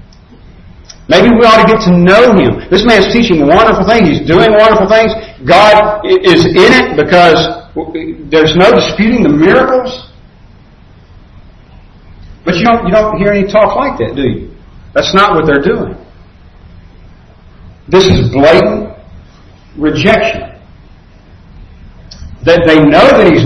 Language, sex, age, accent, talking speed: English, male, 50-69, American, 135 wpm